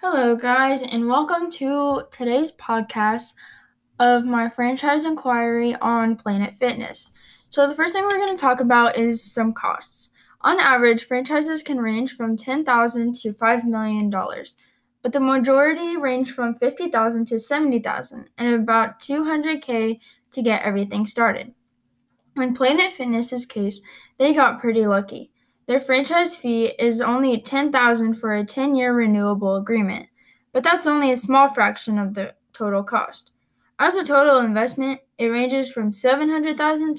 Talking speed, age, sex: 145 wpm, 10-29, female